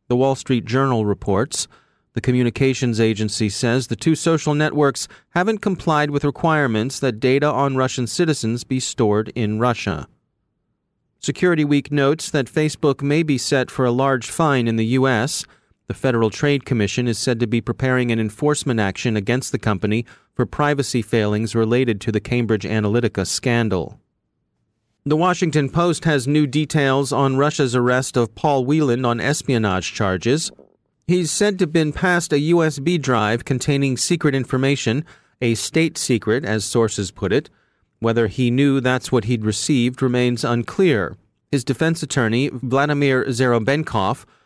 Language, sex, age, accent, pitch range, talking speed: English, male, 30-49, American, 115-150 Hz, 155 wpm